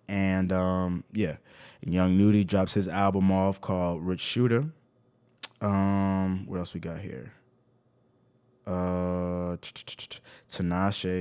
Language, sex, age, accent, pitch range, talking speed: English, male, 20-39, American, 90-120 Hz, 105 wpm